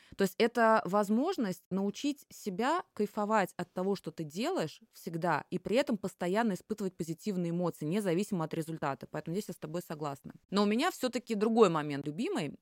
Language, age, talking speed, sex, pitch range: Russian, 20-39, 170 wpm, female, 165-215 Hz